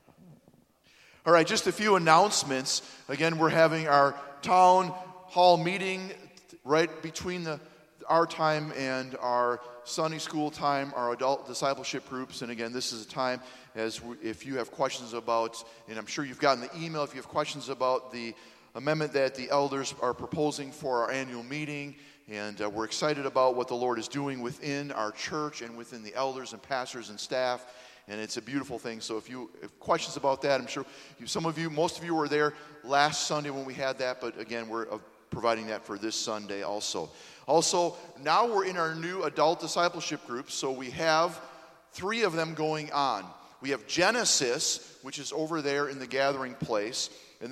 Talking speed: 190 wpm